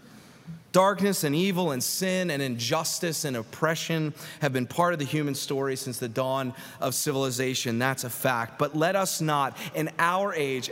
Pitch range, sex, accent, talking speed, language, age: 150-205 Hz, male, American, 175 wpm, English, 30-49